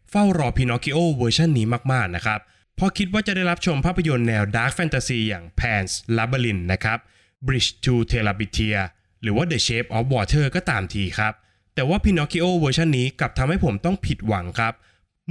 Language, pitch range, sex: Thai, 105-145 Hz, male